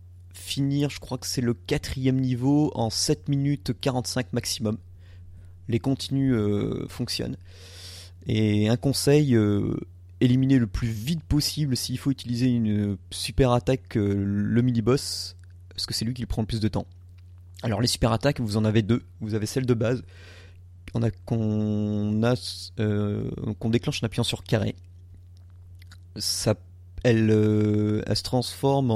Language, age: French, 30-49